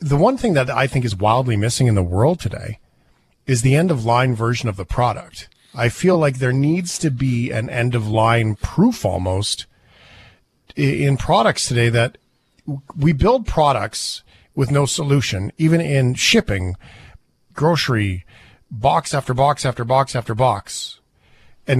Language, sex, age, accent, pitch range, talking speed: English, male, 40-59, American, 120-150 Hz, 155 wpm